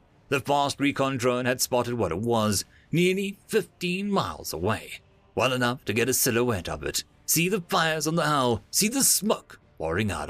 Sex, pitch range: male, 115-165 Hz